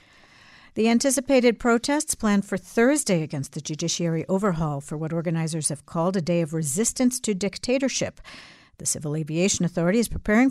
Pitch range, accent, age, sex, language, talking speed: 160-220 Hz, American, 60-79, female, English, 155 wpm